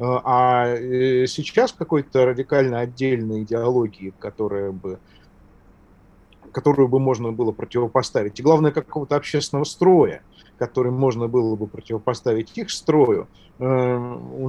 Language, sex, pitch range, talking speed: Russian, male, 115-145 Hz, 110 wpm